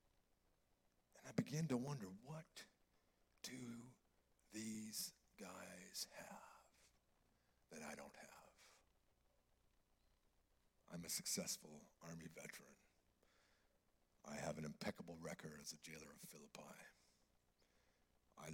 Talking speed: 95 wpm